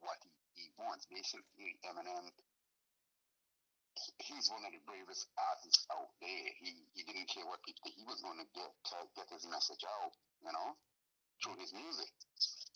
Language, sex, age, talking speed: English, male, 60-79, 170 wpm